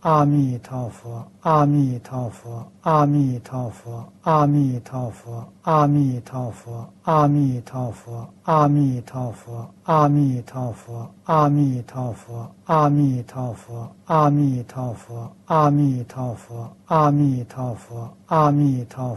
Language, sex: Chinese, male